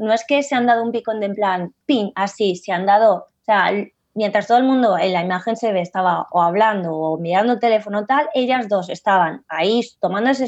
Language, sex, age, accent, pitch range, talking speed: Spanish, female, 20-39, Spanish, 195-265 Hz, 230 wpm